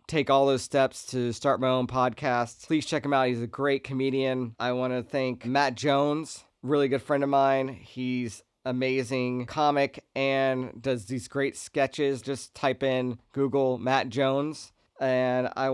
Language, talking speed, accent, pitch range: English, 170 wpm, American, 125-140 Hz